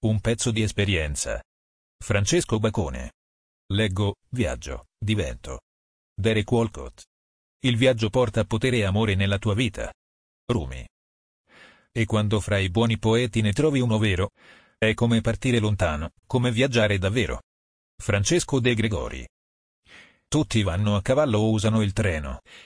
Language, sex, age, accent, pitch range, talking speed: Italian, male, 40-59, native, 100-120 Hz, 130 wpm